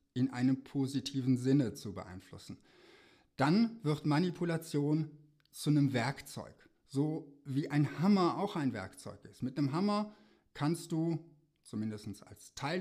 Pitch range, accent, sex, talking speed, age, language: 110-150 Hz, German, male, 130 wpm, 60-79, German